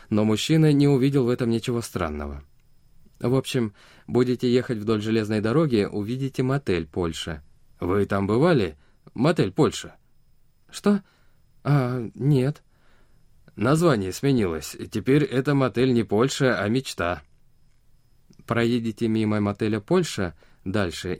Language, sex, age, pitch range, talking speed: Russian, male, 20-39, 90-125 Hz, 115 wpm